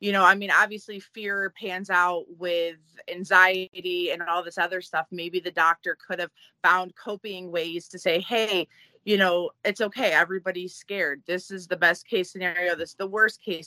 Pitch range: 185-230 Hz